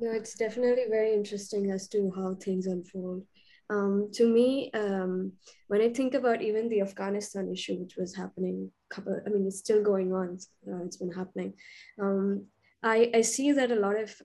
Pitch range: 185-220 Hz